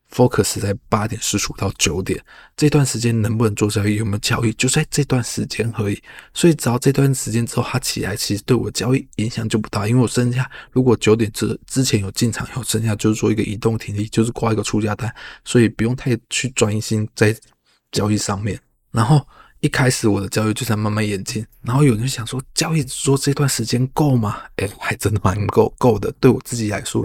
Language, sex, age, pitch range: Chinese, male, 20-39, 105-125 Hz